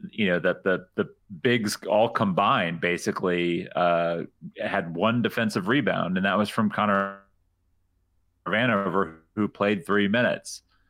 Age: 30-49